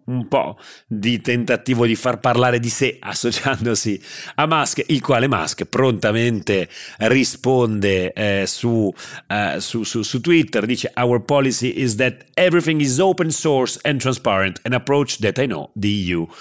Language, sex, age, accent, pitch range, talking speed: Italian, male, 40-59, native, 100-125 Hz, 155 wpm